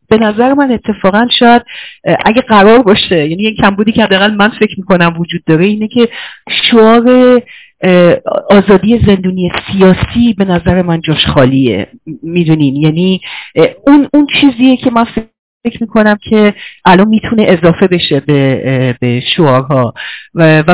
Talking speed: 125 wpm